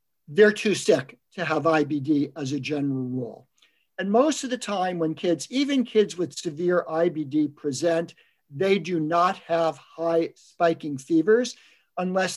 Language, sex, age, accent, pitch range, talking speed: English, male, 50-69, American, 160-210 Hz, 150 wpm